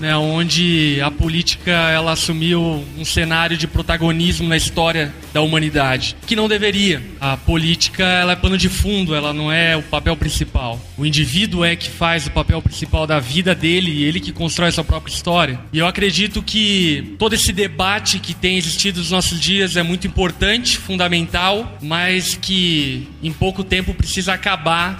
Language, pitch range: Portuguese, 160-190 Hz